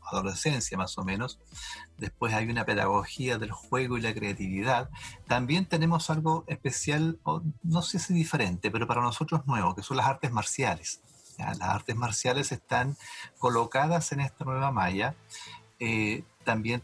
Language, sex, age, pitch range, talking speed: Spanish, male, 40-59, 105-135 Hz, 145 wpm